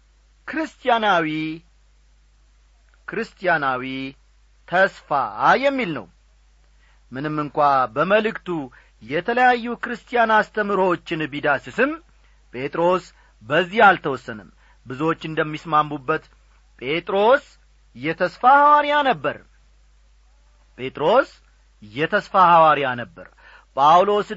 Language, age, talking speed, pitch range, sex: Amharic, 40-59, 60 wpm, 130-215 Hz, male